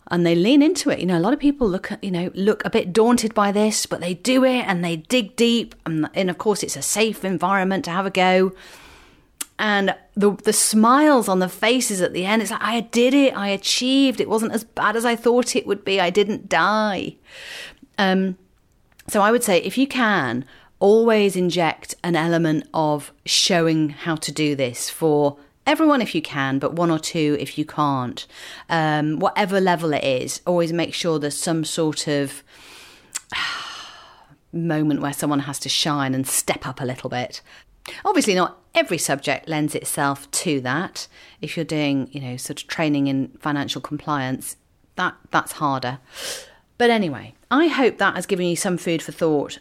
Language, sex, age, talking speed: English, female, 40-59, 190 wpm